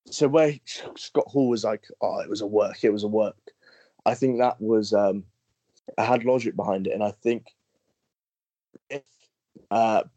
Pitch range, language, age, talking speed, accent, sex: 105-120 Hz, English, 20-39, 175 wpm, British, male